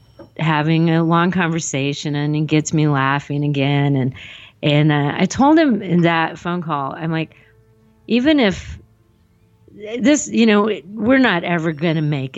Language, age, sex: English, 40-59, female